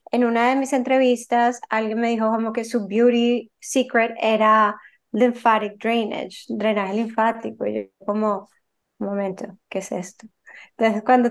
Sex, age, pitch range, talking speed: female, 20-39, 220-250 Hz, 150 wpm